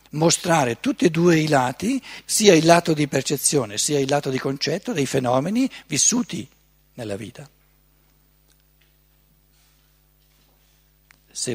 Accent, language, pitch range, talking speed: native, Italian, 115-175 Hz, 115 wpm